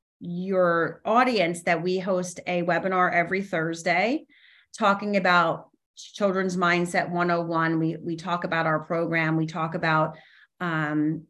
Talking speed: 125 wpm